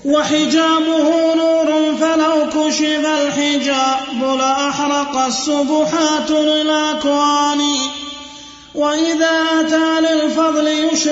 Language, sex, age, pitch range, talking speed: Arabic, male, 30-49, 285-310 Hz, 55 wpm